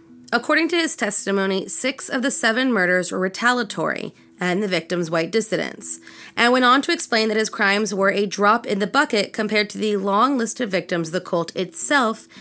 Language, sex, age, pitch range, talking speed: English, female, 30-49, 175-230 Hz, 195 wpm